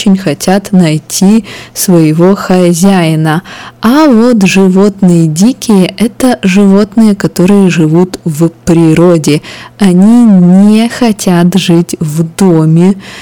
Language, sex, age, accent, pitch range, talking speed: Russian, female, 20-39, native, 170-210 Hz, 95 wpm